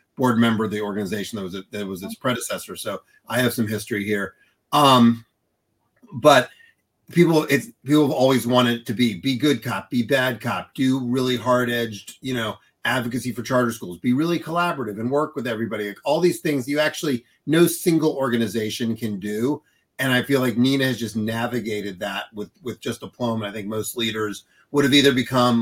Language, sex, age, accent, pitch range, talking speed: English, male, 40-59, American, 105-130 Hz, 190 wpm